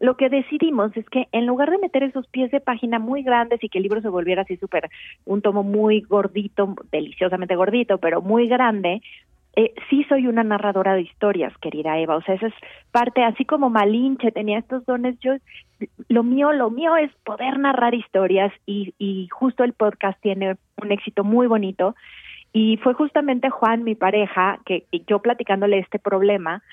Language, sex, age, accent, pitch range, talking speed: Spanish, female, 30-49, Mexican, 190-255 Hz, 185 wpm